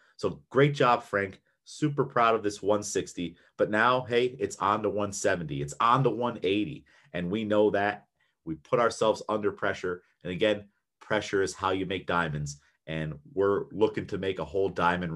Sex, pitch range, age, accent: male, 90-130 Hz, 30-49, American